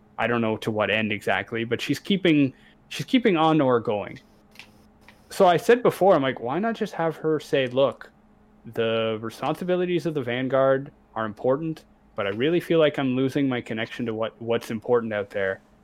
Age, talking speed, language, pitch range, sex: 20-39, 190 wpm, English, 120-155 Hz, male